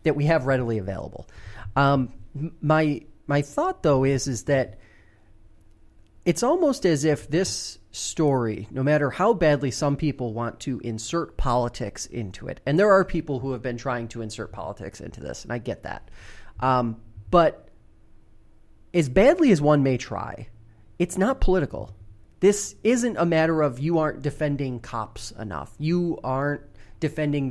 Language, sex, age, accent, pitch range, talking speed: English, male, 30-49, American, 115-155 Hz, 155 wpm